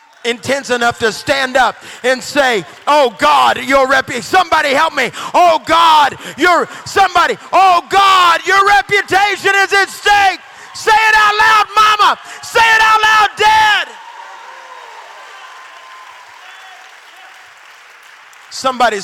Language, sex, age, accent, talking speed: English, male, 40-59, American, 115 wpm